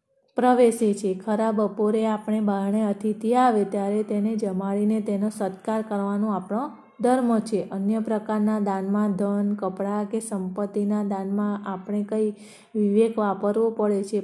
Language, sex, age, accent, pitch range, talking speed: Gujarati, female, 30-49, native, 195-215 Hz, 130 wpm